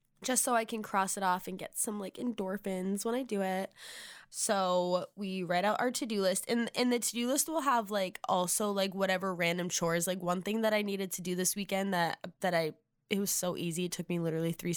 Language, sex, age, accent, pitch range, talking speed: English, female, 10-29, American, 175-205 Hz, 240 wpm